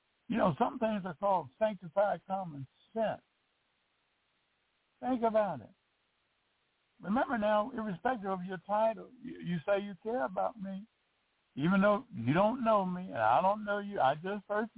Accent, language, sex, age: American, English, male, 60-79